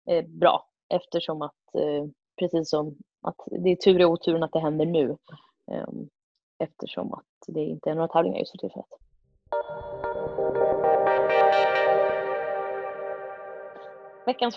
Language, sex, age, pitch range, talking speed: Swedish, female, 20-39, 160-200 Hz, 105 wpm